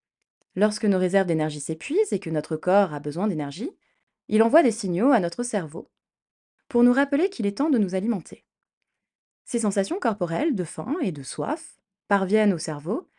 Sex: female